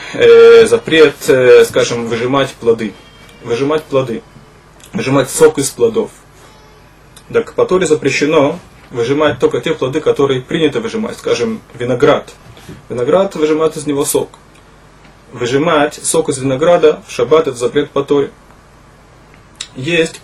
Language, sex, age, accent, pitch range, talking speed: Russian, male, 20-39, native, 130-180 Hz, 115 wpm